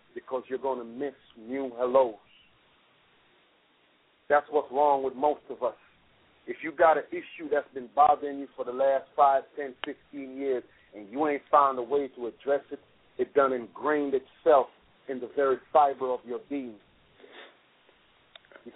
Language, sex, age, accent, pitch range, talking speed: English, male, 40-59, American, 135-155 Hz, 165 wpm